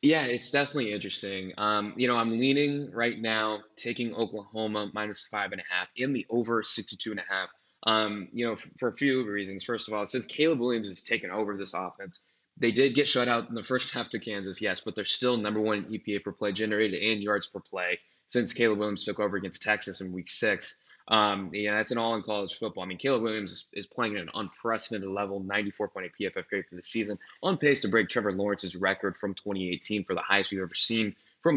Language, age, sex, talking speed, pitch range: English, 20-39, male, 225 wpm, 100-120 Hz